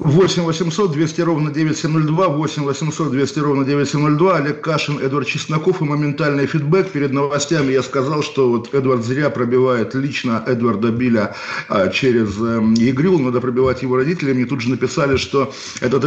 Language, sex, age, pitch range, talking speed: Russian, male, 50-69, 125-150 Hz, 155 wpm